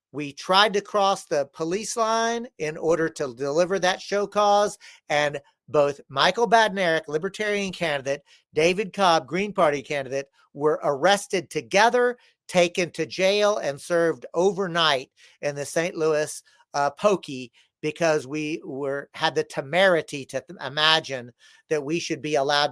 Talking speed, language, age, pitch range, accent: 140 wpm, English, 50-69, 150-200 Hz, American